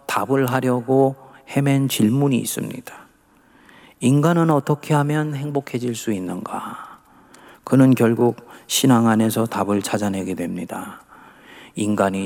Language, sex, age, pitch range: Korean, male, 40-59, 125-185 Hz